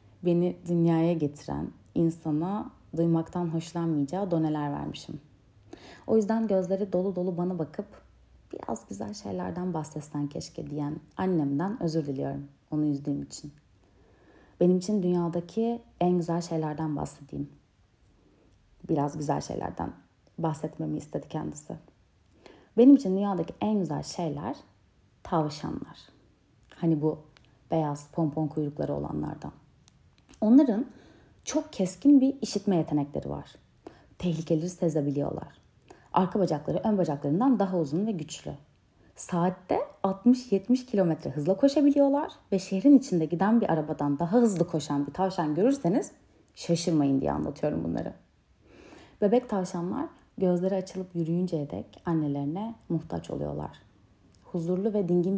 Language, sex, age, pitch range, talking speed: Turkish, female, 30-49, 145-190 Hz, 110 wpm